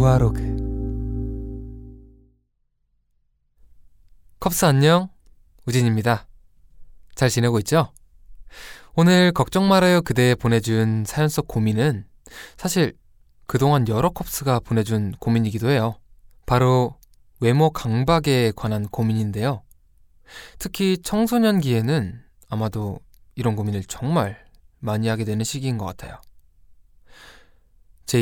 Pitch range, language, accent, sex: 100-140 Hz, Korean, native, male